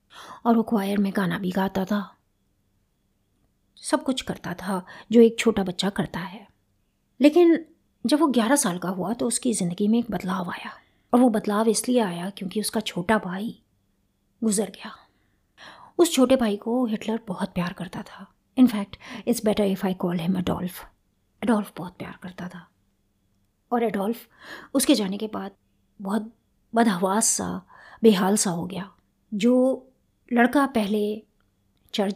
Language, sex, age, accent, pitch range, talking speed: Hindi, female, 20-39, native, 185-230 Hz, 155 wpm